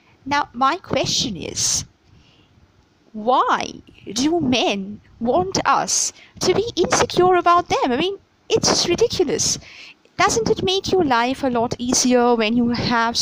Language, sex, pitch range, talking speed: English, female, 205-270 Hz, 130 wpm